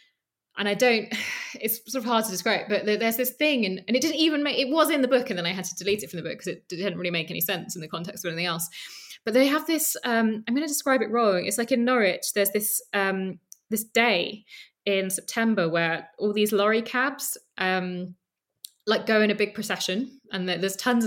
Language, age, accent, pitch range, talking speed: English, 20-39, British, 175-225 Hz, 235 wpm